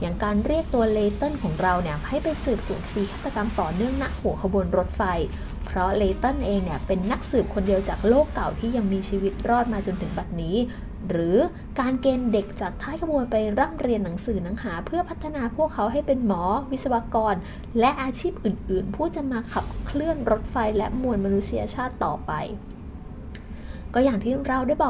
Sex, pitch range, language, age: female, 200-255 Hz, Thai, 20-39